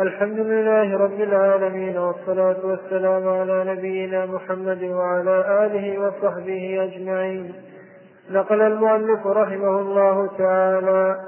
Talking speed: 95 wpm